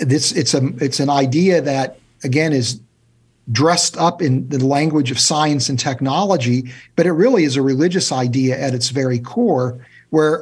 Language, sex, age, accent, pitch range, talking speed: English, male, 50-69, American, 130-160 Hz, 175 wpm